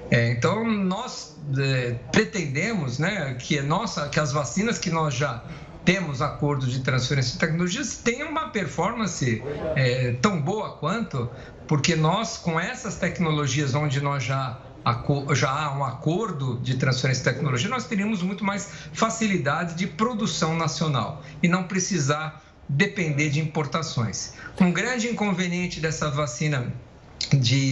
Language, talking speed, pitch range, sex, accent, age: Portuguese, 140 wpm, 140-180 Hz, male, Brazilian, 50-69